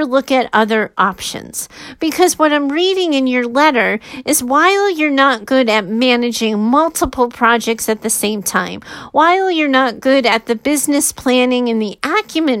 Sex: female